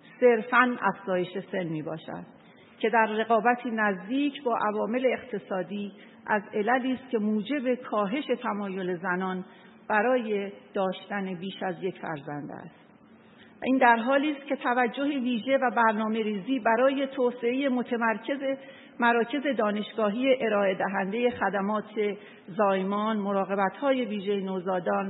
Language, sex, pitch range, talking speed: Persian, female, 190-240 Hz, 110 wpm